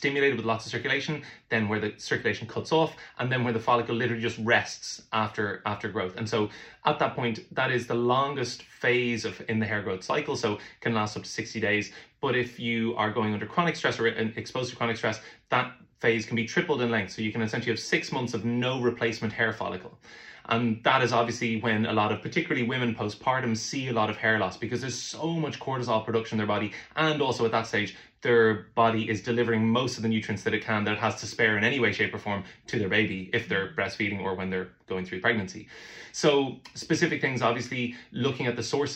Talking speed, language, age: 235 wpm, English, 20-39